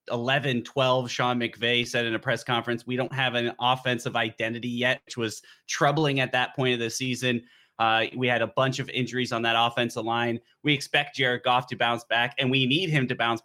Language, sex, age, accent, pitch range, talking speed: English, male, 20-39, American, 120-135 Hz, 215 wpm